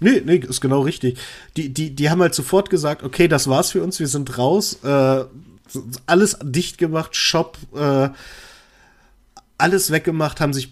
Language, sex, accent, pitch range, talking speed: German, male, German, 130-160 Hz, 170 wpm